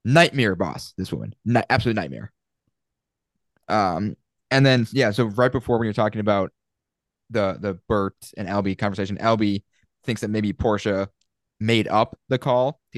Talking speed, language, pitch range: 155 wpm, English, 95-120 Hz